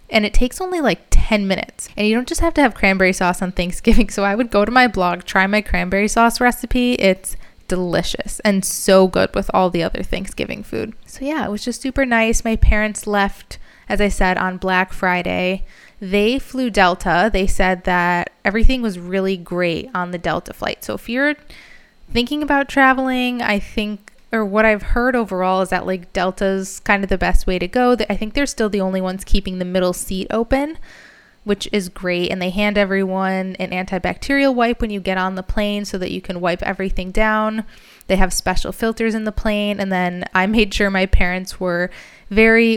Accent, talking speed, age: American, 205 wpm, 20-39